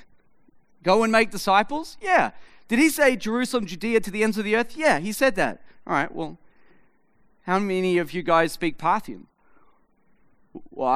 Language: English